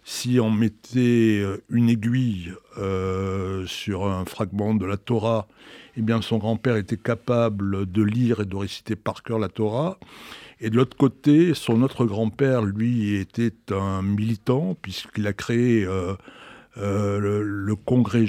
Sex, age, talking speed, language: male, 60-79, 150 wpm, French